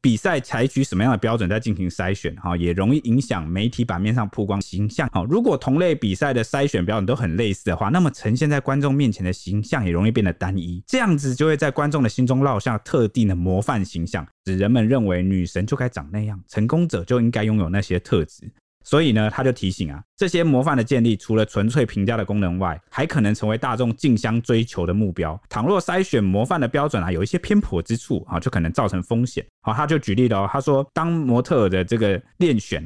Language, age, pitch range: Chinese, 20-39, 95-130 Hz